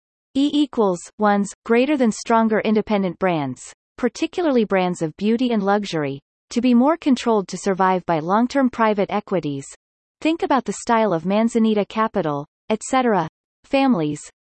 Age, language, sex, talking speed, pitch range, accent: 30-49, English, female, 135 wpm, 180-245 Hz, American